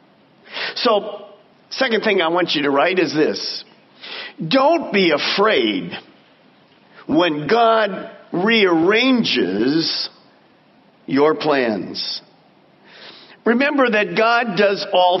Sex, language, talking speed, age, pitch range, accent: male, English, 90 wpm, 50-69, 185-245 Hz, American